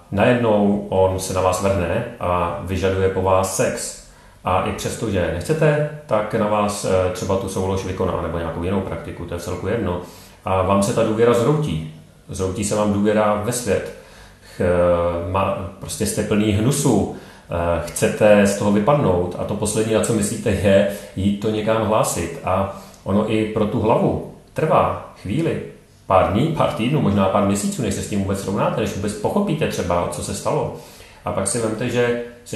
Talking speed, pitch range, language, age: 180 wpm, 90-105 Hz, Czech, 30-49